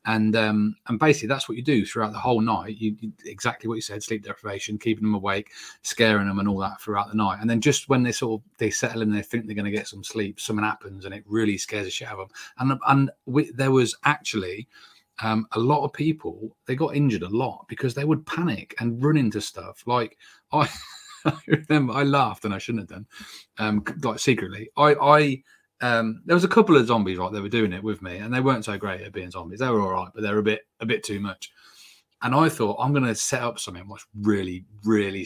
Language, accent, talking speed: English, British, 245 wpm